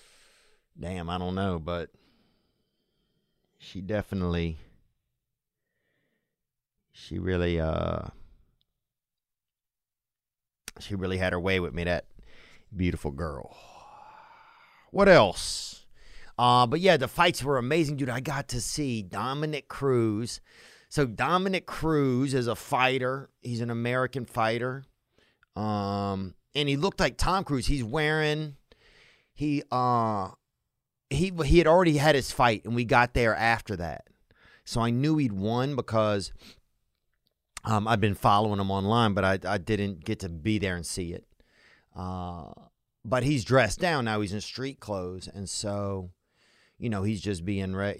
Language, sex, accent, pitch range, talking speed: English, male, American, 95-135 Hz, 140 wpm